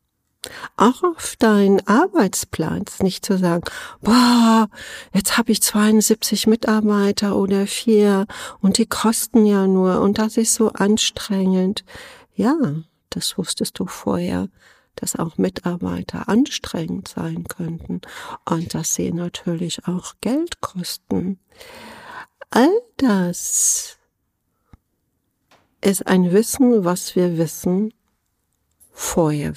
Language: German